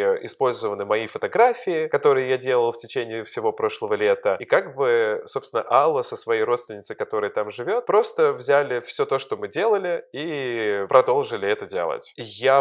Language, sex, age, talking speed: Russian, male, 20-39, 165 wpm